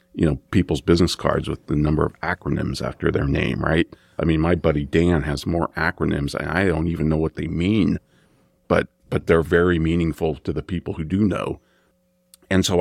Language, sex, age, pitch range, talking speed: English, male, 50-69, 75-90 Hz, 200 wpm